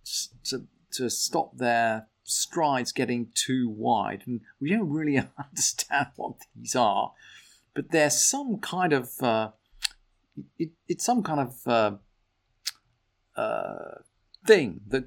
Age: 50-69